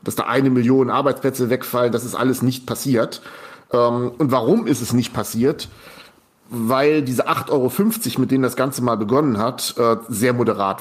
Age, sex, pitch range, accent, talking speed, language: 40-59, male, 120-135 Hz, German, 165 wpm, German